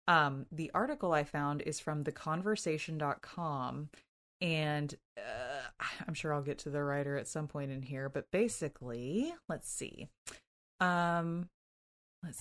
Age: 30-49